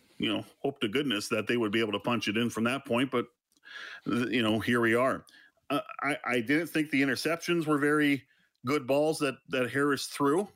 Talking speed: 215 wpm